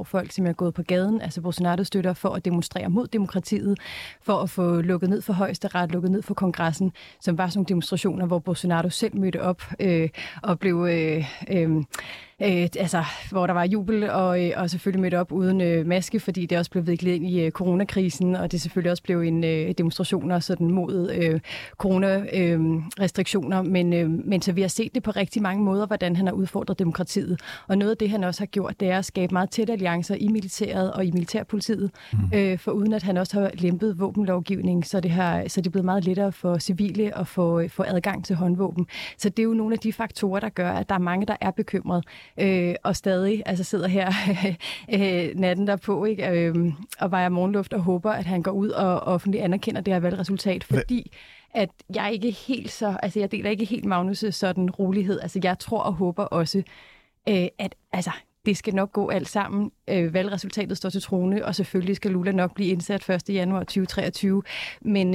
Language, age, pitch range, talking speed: Danish, 30-49, 180-200 Hz, 205 wpm